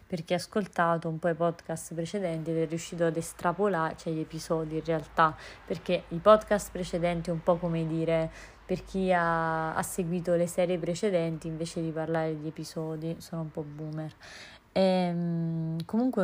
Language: Italian